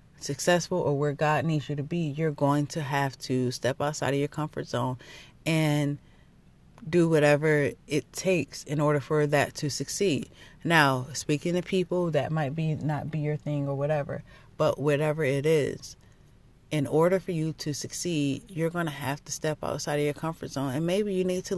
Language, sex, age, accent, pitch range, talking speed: English, female, 30-49, American, 140-160 Hz, 190 wpm